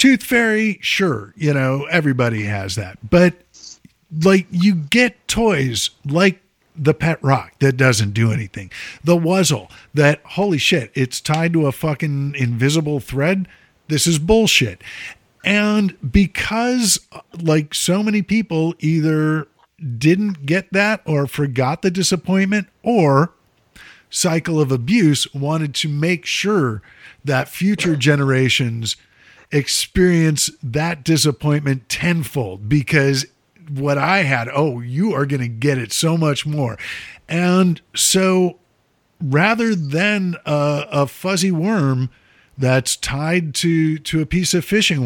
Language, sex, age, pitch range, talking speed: English, male, 50-69, 140-185 Hz, 125 wpm